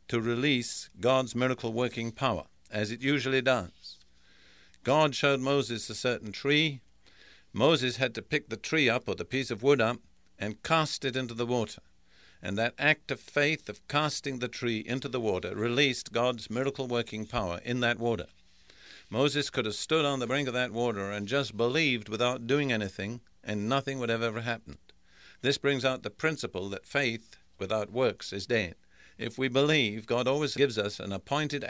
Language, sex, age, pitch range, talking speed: English, male, 50-69, 110-135 Hz, 180 wpm